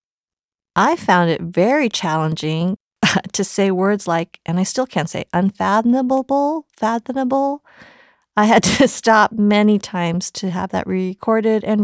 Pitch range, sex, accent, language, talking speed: 175-220 Hz, female, American, English, 140 wpm